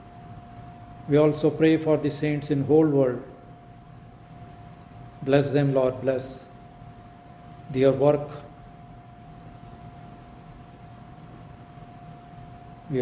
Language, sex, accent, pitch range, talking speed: English, male, Indian, 130-145 Hz, 75 wpm